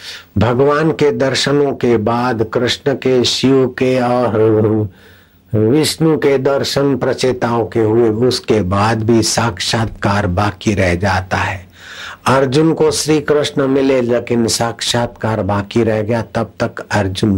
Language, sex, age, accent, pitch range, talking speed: Hindi, male, 60-79, native, 100-120 Hz, 130 wpm